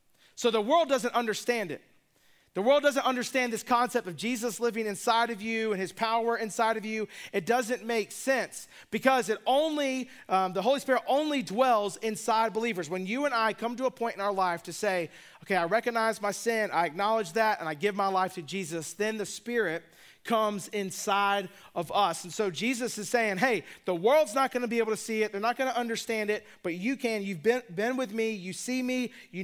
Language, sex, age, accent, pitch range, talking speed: English, male, 40-59, American, 195-245 Hz, 215 wpm